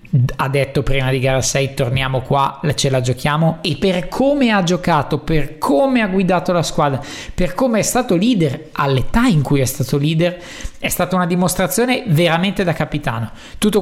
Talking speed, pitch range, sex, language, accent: 180 wpm, 140-175 Hz, male, Italian, native